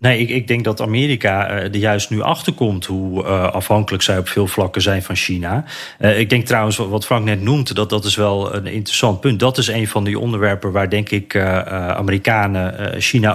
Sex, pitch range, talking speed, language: male, 105-130 Hz, 215 wpm, Dutch